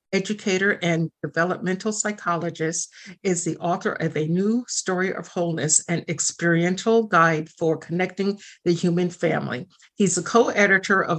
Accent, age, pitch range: American, 50-69, 170-200 Hz